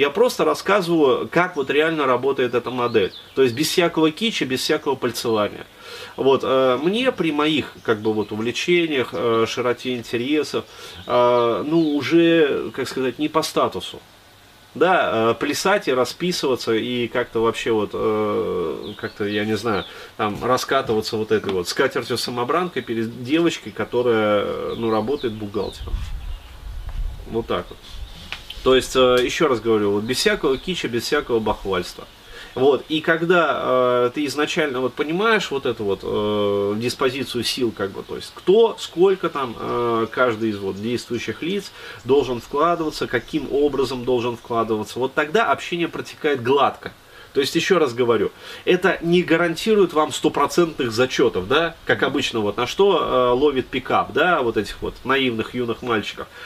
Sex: male